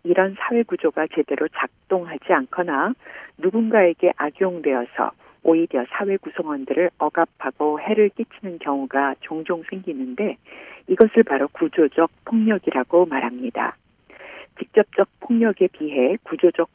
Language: Korean